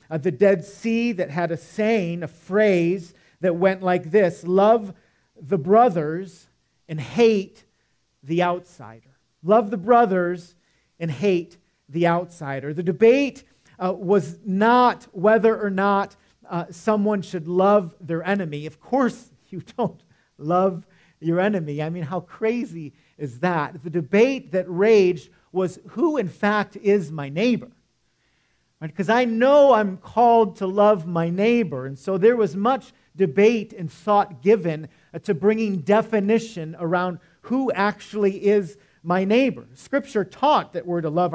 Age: 40-59